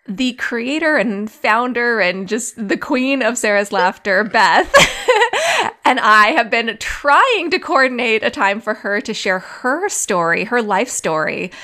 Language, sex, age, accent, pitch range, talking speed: English, female, 20-39, American, 185-235 Hz, 155 wpm